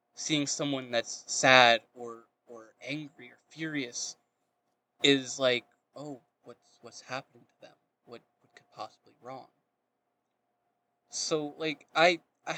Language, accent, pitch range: English, American, 120-145 Hz